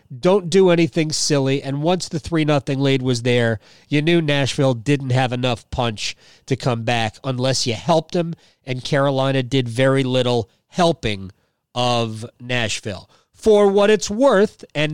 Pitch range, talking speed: 125-165 Hz, 155 wpm